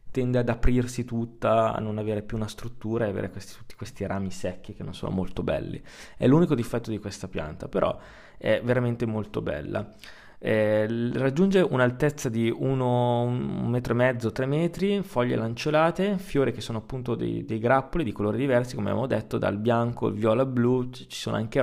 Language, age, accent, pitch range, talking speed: Italian, 20-39, native, 105-135 Hz, 180 wpm